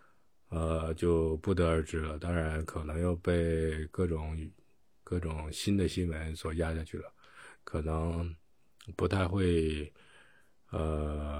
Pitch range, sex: 80-95 Hz, male